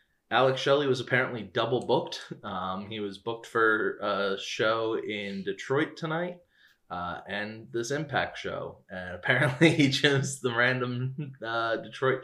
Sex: male